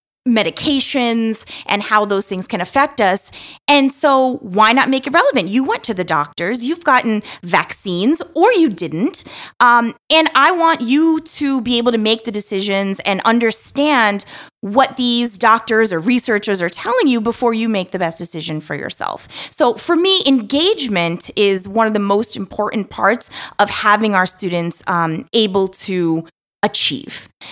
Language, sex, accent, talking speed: English, female, American, 165 wpm